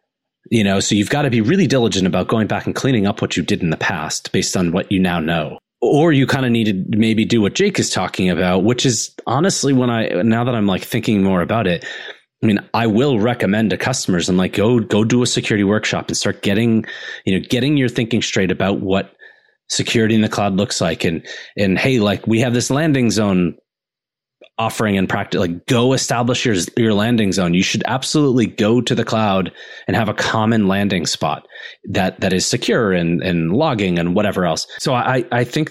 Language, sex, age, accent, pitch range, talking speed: English, male, 30-49, American, 95-120 Hz, 220 wpm